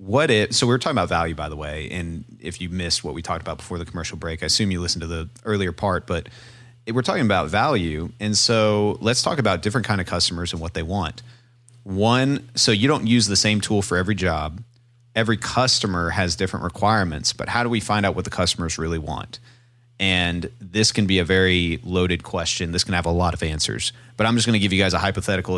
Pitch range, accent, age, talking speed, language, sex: 90-120 Hz, American, 30-49, 235 wpm, English, male